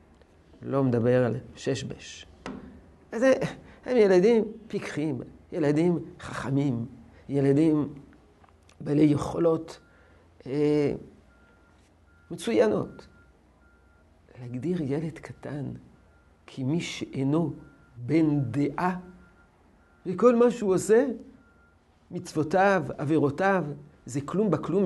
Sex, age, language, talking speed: male, 50-69, Hebrew, 75 wpm